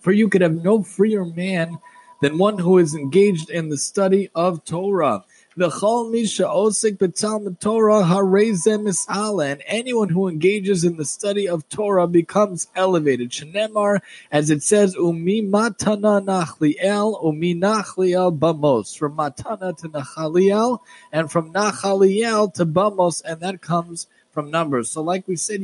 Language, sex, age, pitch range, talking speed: English, male, 20-39, 160-200 Hz, 135 wpm